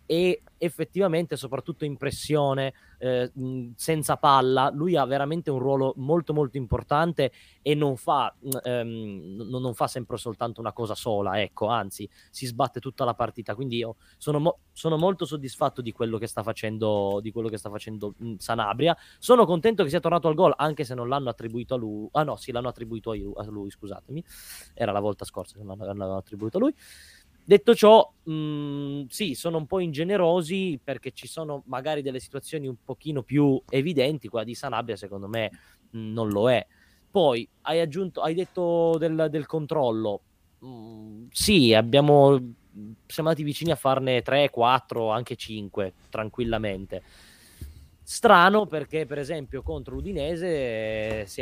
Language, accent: Italian, native